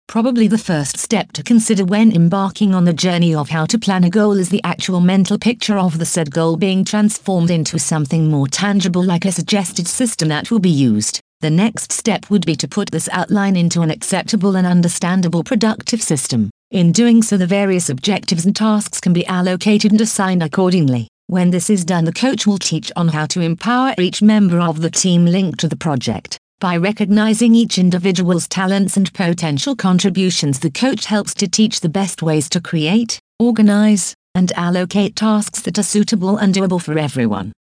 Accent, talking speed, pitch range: British, 190 wpm, 170-210 Hz